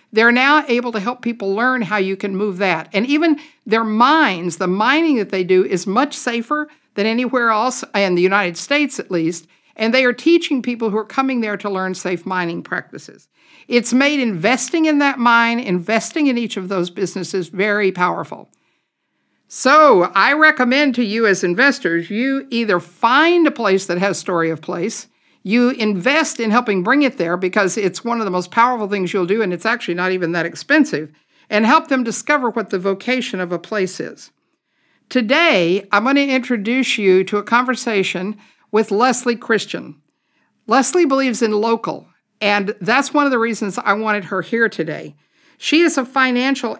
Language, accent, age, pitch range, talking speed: English, American, 60-79, 190-260 Hz, 185 wpm